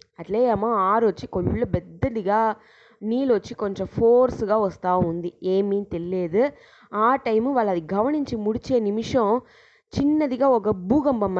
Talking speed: 105 wpm